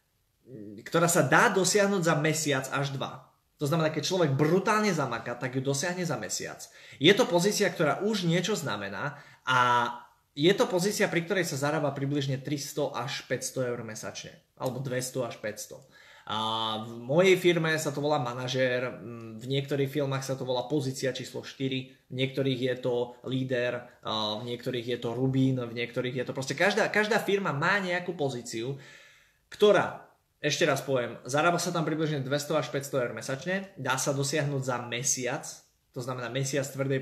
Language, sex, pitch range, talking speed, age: Slovak, male, 125-160 Hz, 165 wpm, 20-39